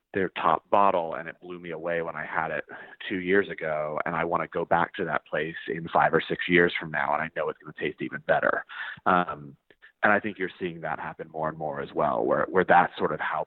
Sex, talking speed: male, 265 wpm